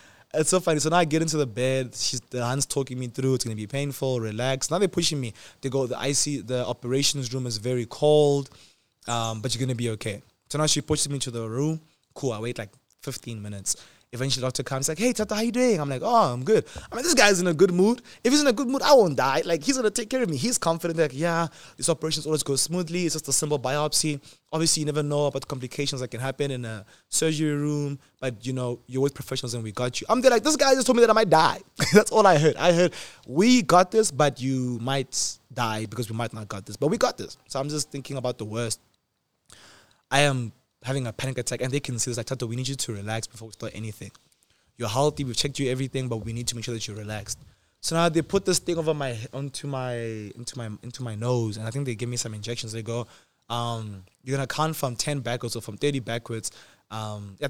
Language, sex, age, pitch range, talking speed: English, male, 20-39, 120-155 Hz, 260 wpm